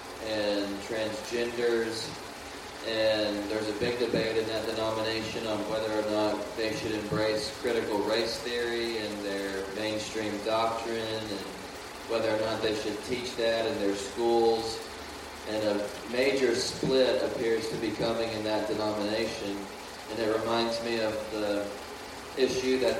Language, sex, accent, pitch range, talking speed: English, male, American, 105-120 Hz, 140 wpm